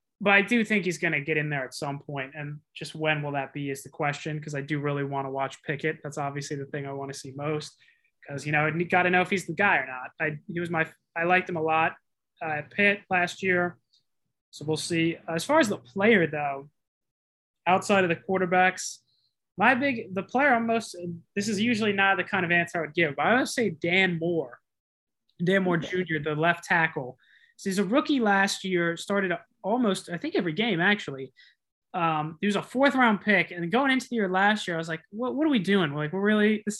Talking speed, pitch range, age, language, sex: 240 wpm, 160-210 Hz, 20-39, English, male